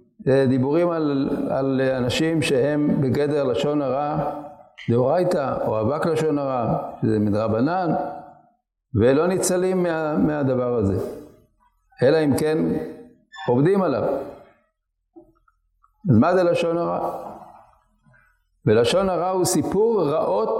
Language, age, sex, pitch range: Hebrew, 60-79, male, 140-215 Hz